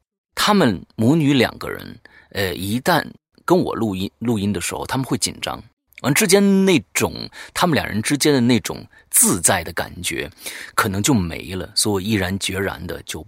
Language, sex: Chinese, male